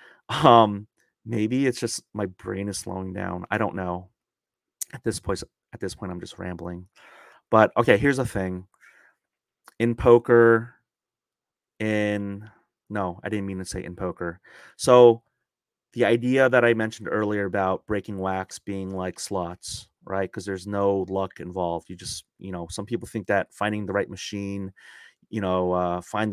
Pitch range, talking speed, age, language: 95-110 Hz, 165 wpm, 30-49, English